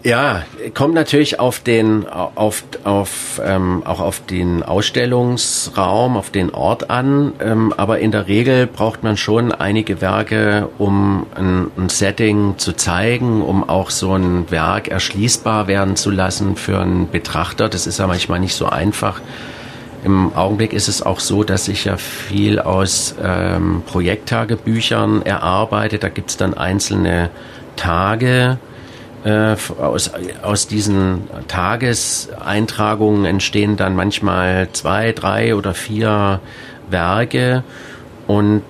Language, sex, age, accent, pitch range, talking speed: German, male, 40-59, German, 95-115 Hz, 135 wpm